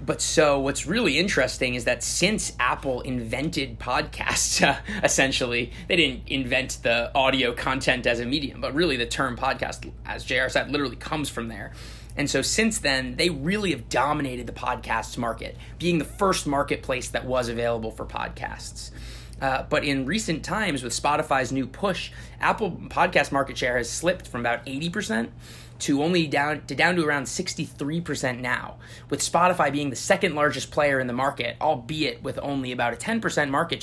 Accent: American